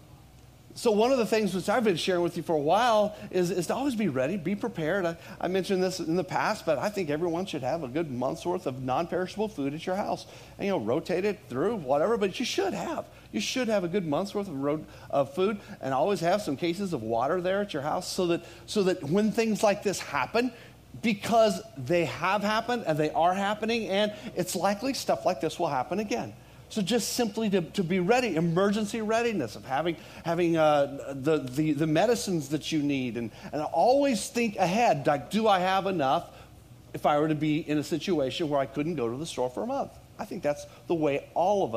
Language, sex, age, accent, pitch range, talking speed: English, male, 40-59, American, 145-205 Hz, 230 wpm